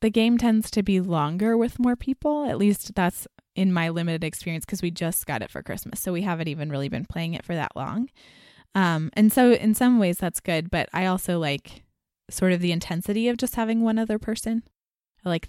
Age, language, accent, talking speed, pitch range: 20-39, English, American, 225 wpm, 165-200 Hz